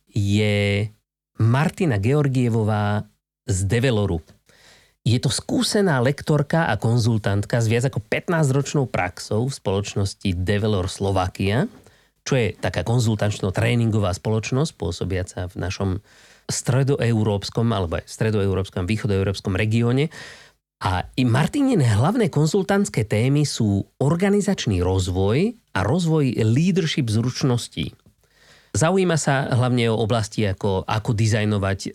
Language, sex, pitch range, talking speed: Slovak, male, 100-140 Hz, 105 wpm